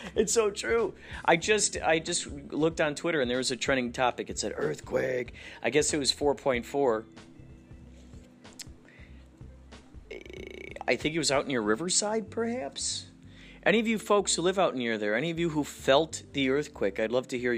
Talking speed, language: 180 wpm, English